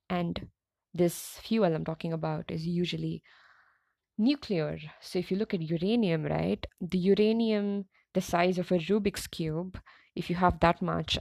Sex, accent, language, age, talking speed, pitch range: female, Indian, English, 20-39, 155 wpm, 165-205 Hz